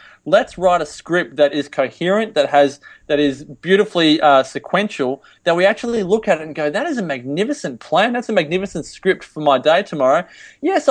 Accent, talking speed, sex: Australian, 200 wpm, male